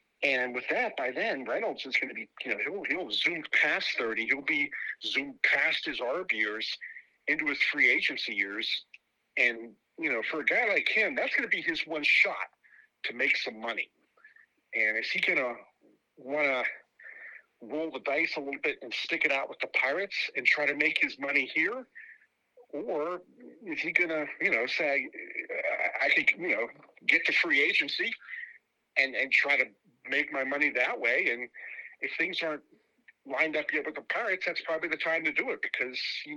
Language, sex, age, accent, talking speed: English, male, 50-69, American, 195 wpm